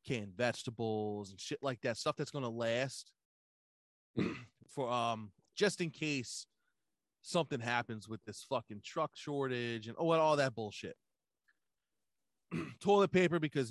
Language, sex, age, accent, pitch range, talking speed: English, male, 20-39, American, 115-150 Hz, 130 wpm